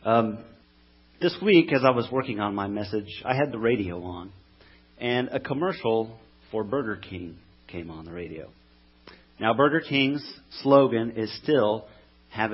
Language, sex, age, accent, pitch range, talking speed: English, male, 40-59, American, 85-125 Hz, 155 wpm